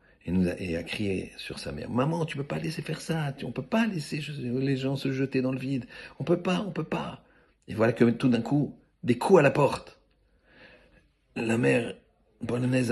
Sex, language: male, French